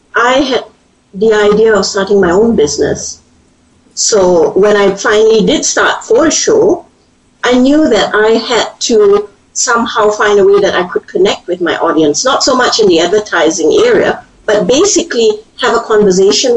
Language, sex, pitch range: English, female, 200-280 Hz